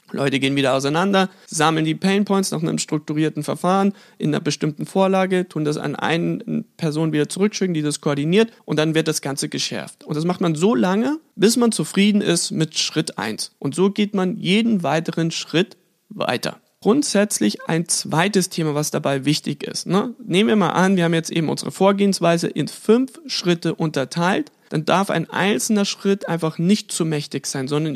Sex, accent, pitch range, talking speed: male, German, 160-195 Hz, 185 wpm